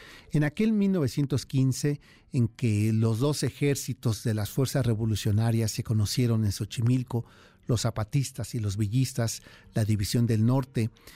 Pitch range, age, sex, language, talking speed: 110-135 Hz, 50-69, male, Spanish, 135 wpm